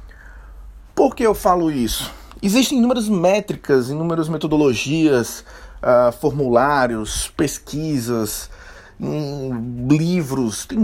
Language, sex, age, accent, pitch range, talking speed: Portuguese, male, 20-39, Brazilian, 110-165 Hz, 80 wpm